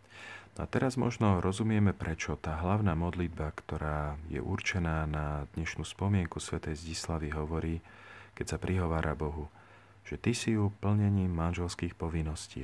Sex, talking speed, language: male, 135 wpm, Slovak